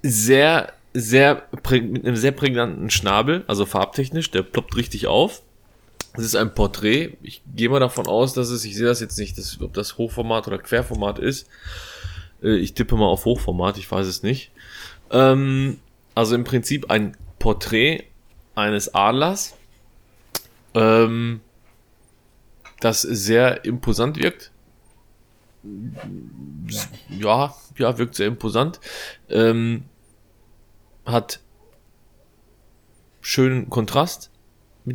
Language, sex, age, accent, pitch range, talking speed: German, male, 20-39, German, 105-125 Hz, 115 wpm